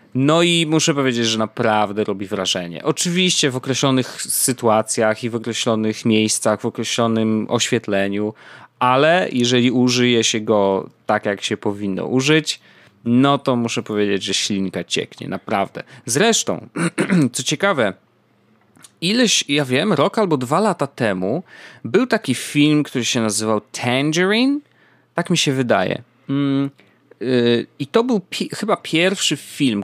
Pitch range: 110-155 Hz